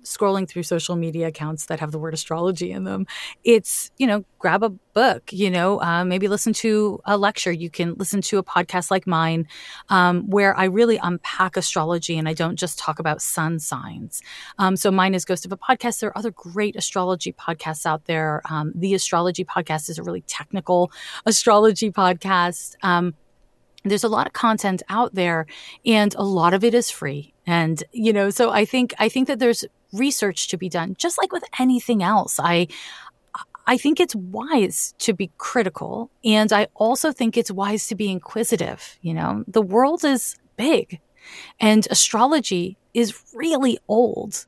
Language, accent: English, American